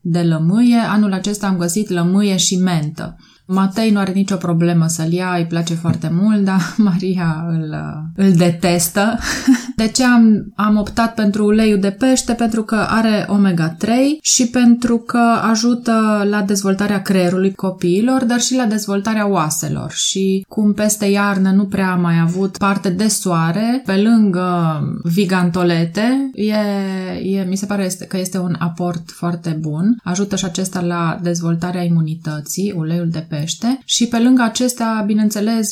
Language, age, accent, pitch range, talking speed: Romanian, 20-39, native, 175-210 Hz, 150 wpm